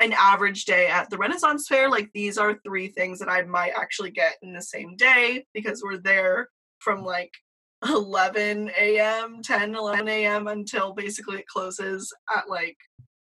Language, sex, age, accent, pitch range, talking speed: English, female, 10-29, American, 195-245 Hz, 165 wpm